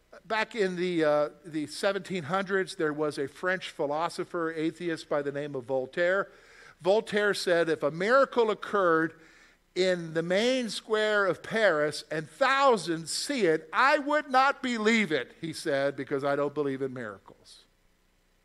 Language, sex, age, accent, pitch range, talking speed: English, male, 50-69, American, 130-185 Hz, 150 wpm